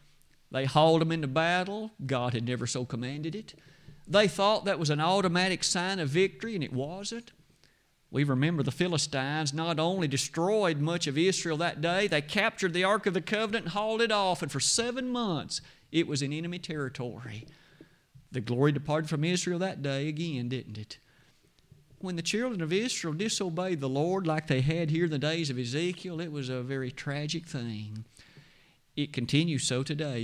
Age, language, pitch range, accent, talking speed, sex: 50-69, English, 140-180 Hz, American, 185 wpm, male